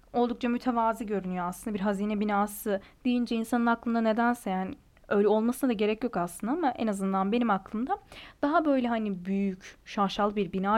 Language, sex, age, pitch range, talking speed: Turkish, female, 10-29, 205-260 Hz, 165 wpm